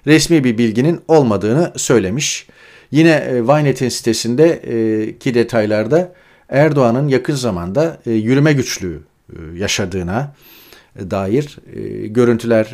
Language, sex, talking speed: Turkish, male, 80 wpm